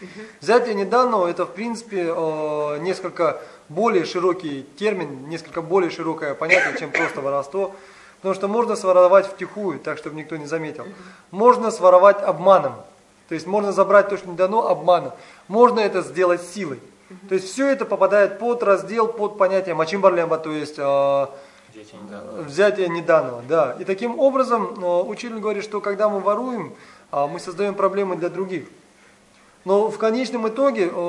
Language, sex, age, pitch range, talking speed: Russian, male, 20-39, 175-225 Hz, 145 wpm